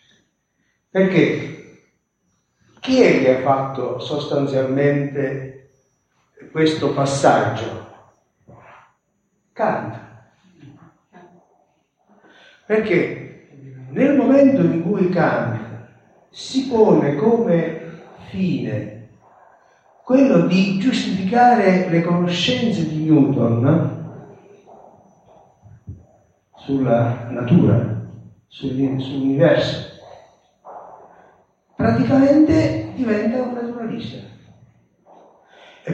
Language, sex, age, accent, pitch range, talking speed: Italian, male, 50-69, native, 140-200 Hz, 60 wpm